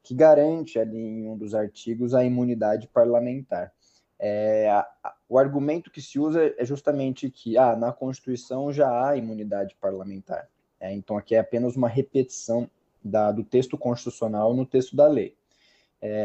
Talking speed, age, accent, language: 165 wpm, 20-39, Brazilian, Portuguese